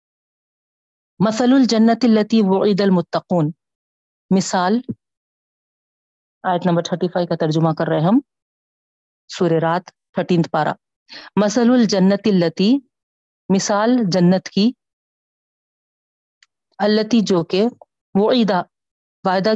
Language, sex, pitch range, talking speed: Urdu, female, 170-215 Hz, 90 wpm